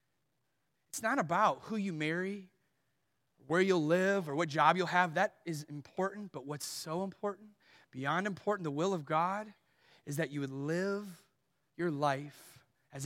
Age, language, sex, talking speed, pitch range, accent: 30-49, English, male, 160 wpm, 145-185 Hz, American